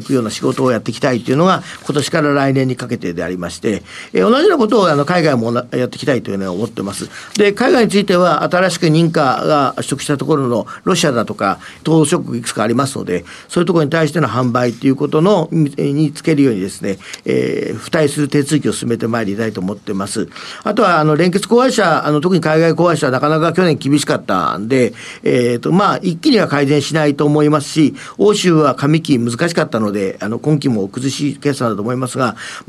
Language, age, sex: Japanese, 50-69, male